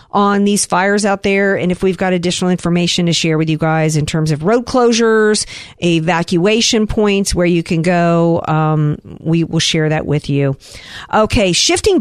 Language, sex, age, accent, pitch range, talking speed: English, female, 50-69, American, 155-210 Hz, 180 wpm